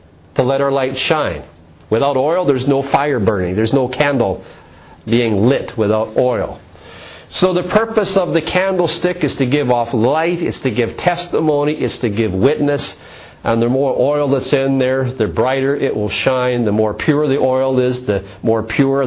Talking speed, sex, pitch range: 180 wpm, male, 120-170 Hz